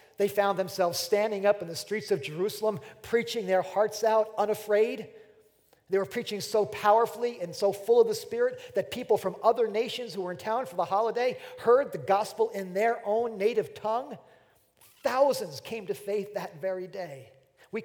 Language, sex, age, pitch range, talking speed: English, male, 40-59, 175-225 Hz, 180 wpm